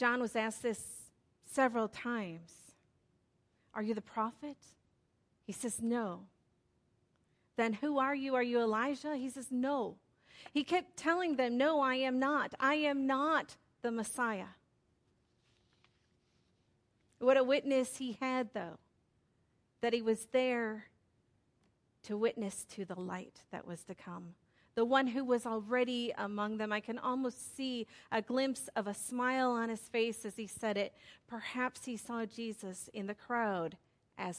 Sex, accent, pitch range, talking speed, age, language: female, American, 210-260 Hz, 150 wpm, 40-59, English